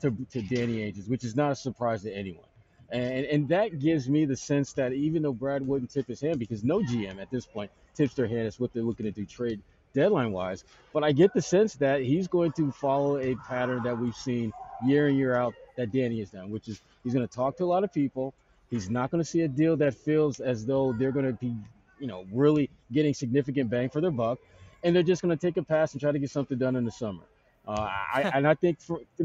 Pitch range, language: 120-150 Hz, English